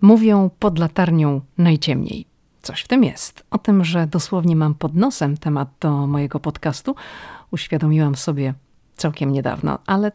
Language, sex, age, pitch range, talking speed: Polish, female, 40-59, 150-185 Hz, 140 wpm